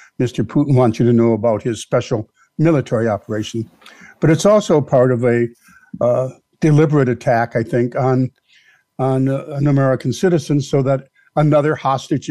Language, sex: English, male